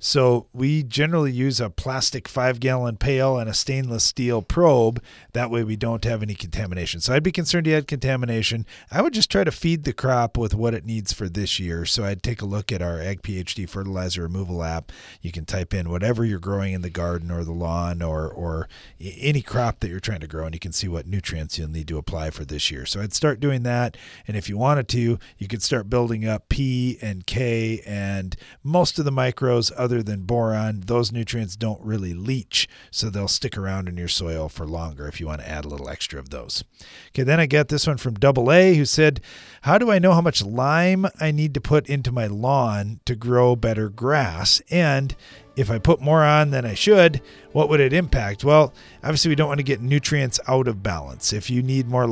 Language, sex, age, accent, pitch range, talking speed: English, male, 40-59, American, 95-135 Hz, 225 wpm